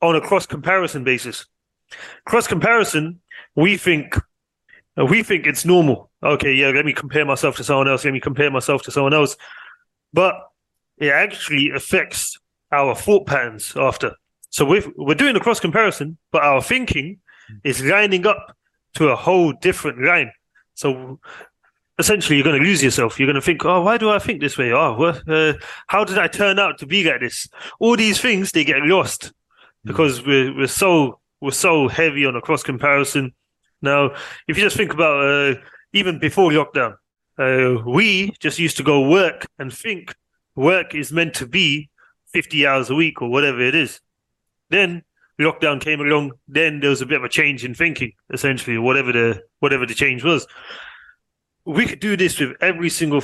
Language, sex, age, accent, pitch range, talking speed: English, male, 30-49, British, 135-180 Hz, 180 wpm